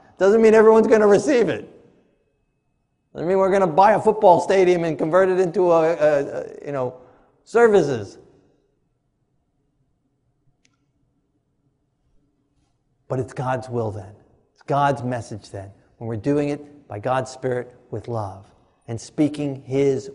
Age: 50-69